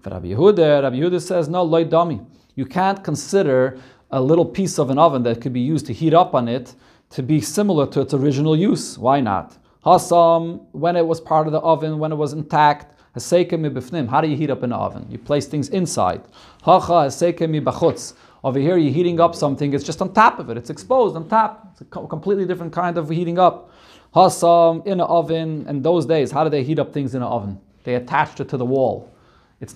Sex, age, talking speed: male, 30-49, 225 wpm